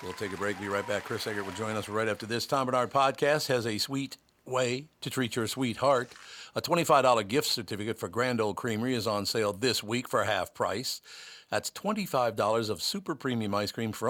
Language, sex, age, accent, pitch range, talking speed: English, male, 50-69, American, 105-130 Hz, 215 wpm